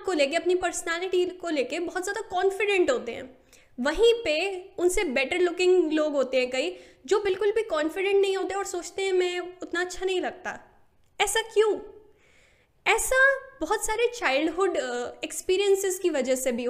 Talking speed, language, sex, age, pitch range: 160 wpm, Hindi, female, 10-29, 295-390 Hz